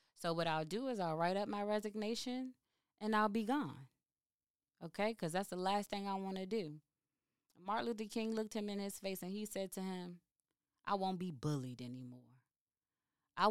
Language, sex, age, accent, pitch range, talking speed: English, female, 20-39, American, 150-215 Hz, 190 wpm